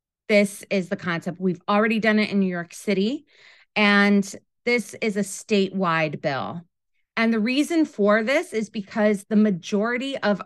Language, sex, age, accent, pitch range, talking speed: English, female, 30-49, American, 175-210 Hz, 160 wpm